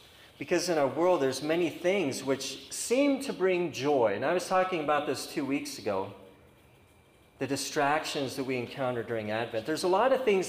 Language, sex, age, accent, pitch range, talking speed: English, male, 40-59, American, 130-185 Hz, 190 wpm